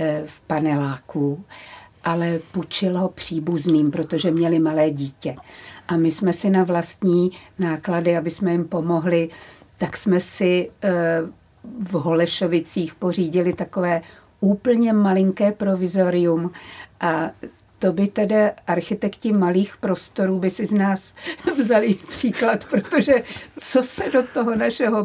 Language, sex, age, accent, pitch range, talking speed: Czech, female, 50-69, native, 185-240 Hz, 120 wpm